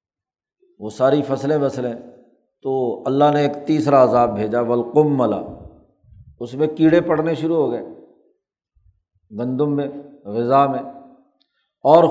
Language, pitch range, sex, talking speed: Urdu, 130-165 Hz, male, 120 wpm